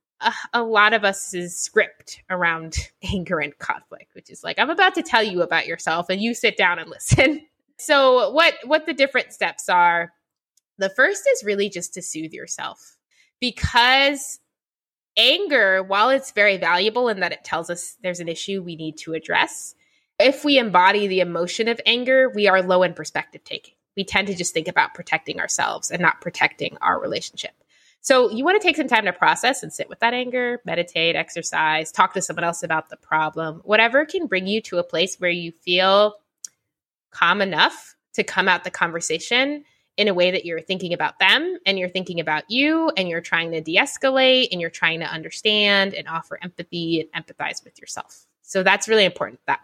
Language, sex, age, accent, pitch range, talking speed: English, female, 20-39, American, 175-255 Hz, 195 wpm